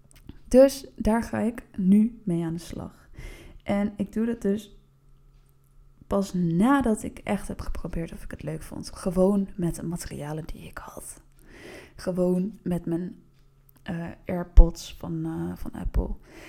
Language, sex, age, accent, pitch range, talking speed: Dutch, female, 20-39, Dutch, 175-225 Hz, 150 wpm